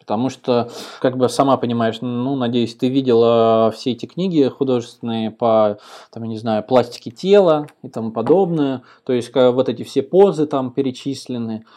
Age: 20-39